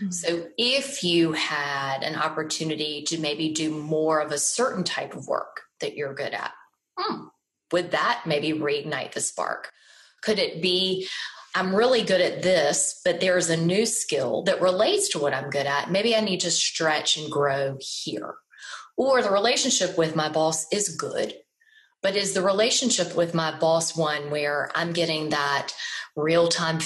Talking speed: 170 wpm